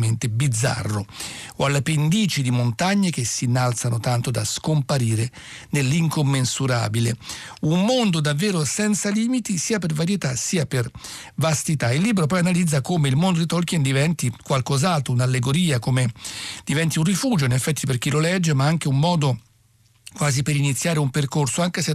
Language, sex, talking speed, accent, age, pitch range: Italian, male, 155 wpm, native, 60-79, 125-165 Hz